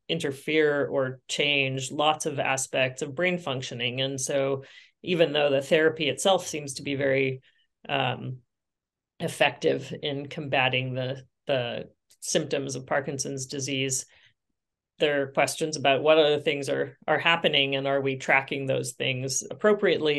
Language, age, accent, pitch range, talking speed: English, 30-49, American, 135-160 Hz, 140 wpm